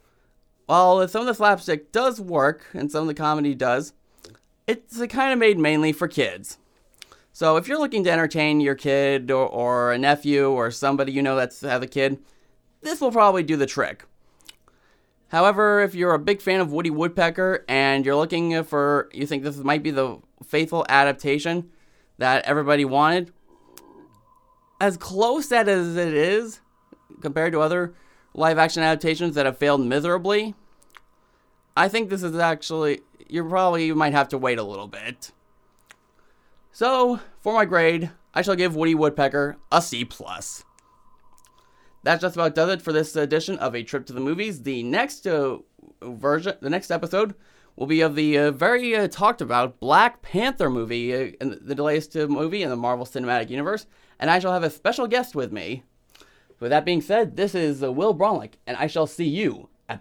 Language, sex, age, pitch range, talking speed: English, male, 20-39, 140-185 Hz, 180 wpm